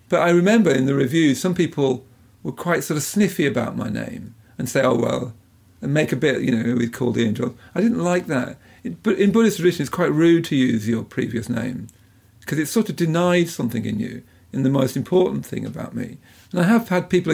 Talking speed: 230 wpm